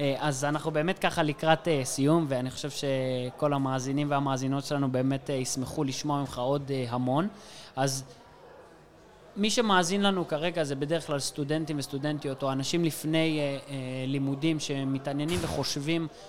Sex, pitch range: male, 135-170 Hz